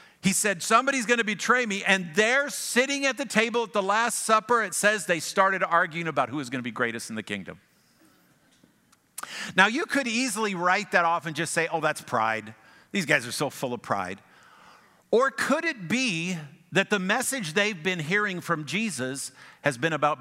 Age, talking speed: 50-69, 200 wpm